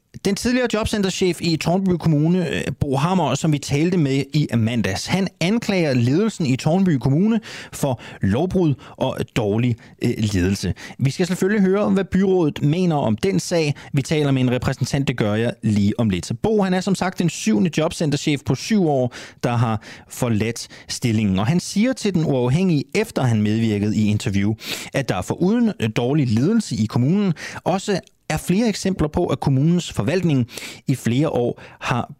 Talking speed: 175 wpm